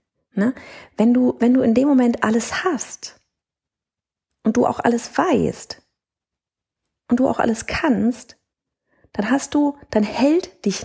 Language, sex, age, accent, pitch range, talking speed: German, female, 30-49, German, 180-245 Hz, 145 wpm